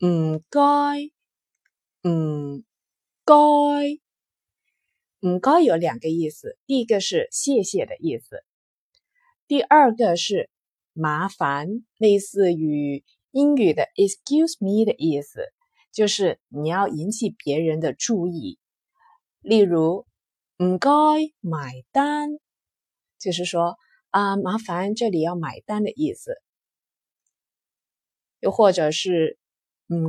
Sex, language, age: female, Chinese, 30-49